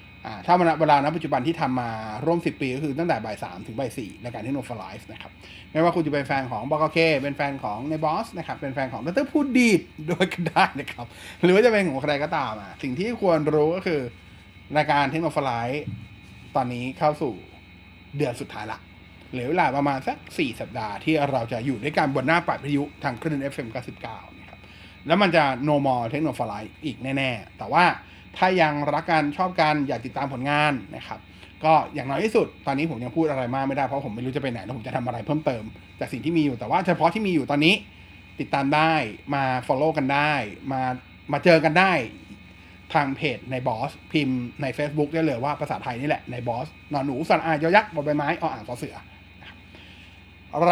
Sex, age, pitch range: male, 20-39, 115-155 Hz